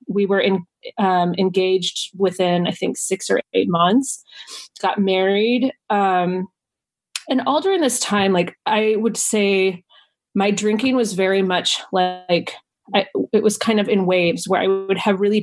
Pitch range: 185-215 Hz